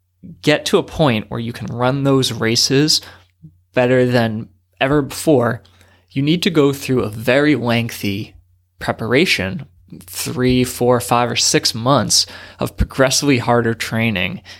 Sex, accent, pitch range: male, American, 100-130 Hz